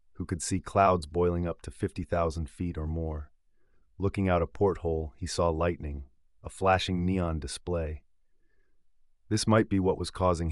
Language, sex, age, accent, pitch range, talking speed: English, male, 30-49, American, 80-95 Hz, 160 wpm